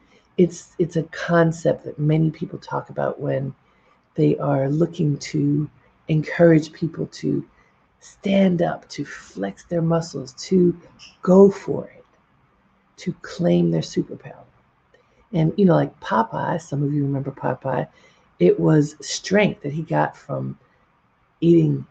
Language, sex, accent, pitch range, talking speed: English, female, American, 155-200 Hz, 135 wpm